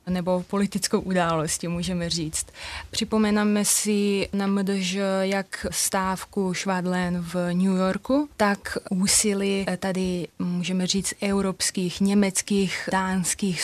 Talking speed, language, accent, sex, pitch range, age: 100 wpm, Czech, native, female, 185-205 Hz, 20-39